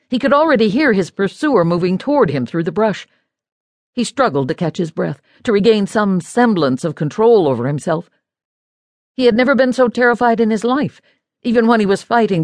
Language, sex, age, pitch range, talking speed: English, female, 60-79, 155-235 Hz, 195 wpm